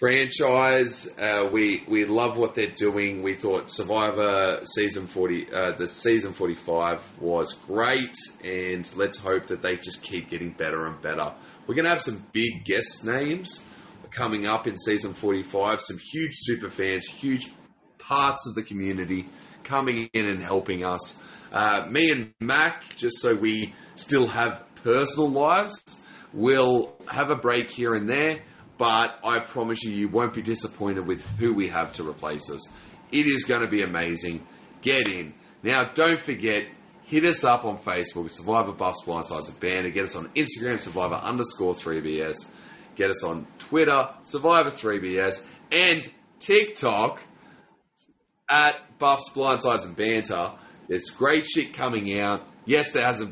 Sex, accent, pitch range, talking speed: male, Australian, 95-130 Hz, 160 wpm